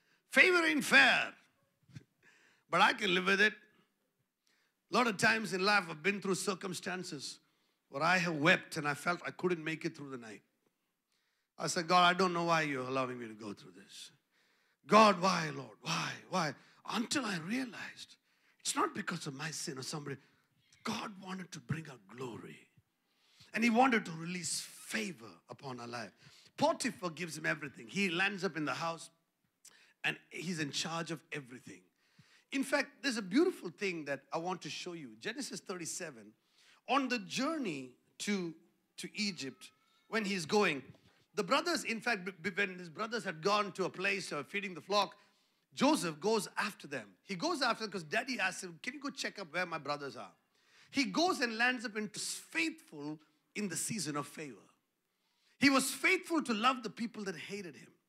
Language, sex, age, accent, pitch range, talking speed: English, male, 50-69, Indian, 160-220 Hz, 185 wpm